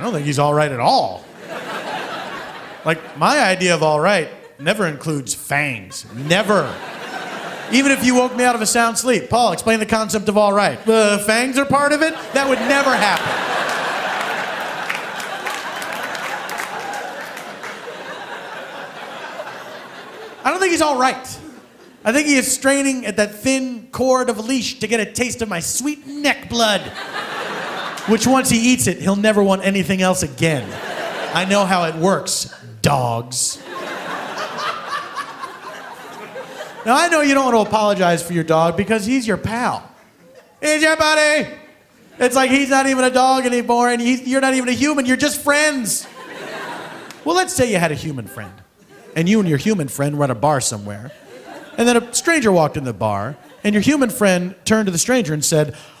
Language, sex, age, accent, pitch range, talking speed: English, male, 30-49, American, 170-260 Hz, 170 wpm